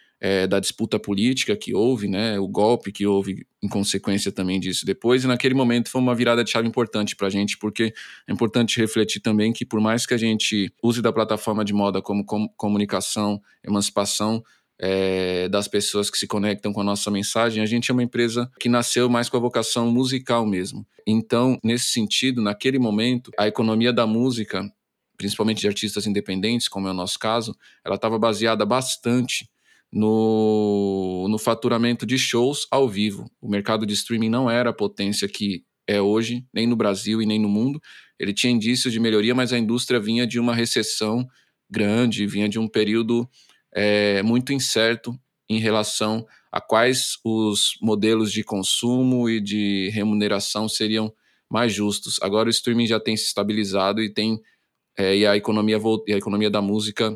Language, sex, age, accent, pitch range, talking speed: Portuguese, male, 20-39, Brazilian, 105-120 Hz, 170 wpm